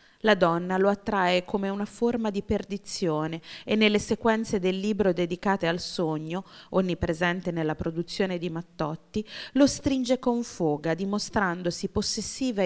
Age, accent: 30-49, native